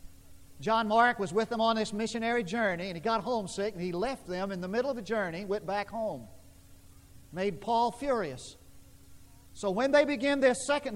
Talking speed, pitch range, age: 190 wpm, 155-245 Hz, 50-69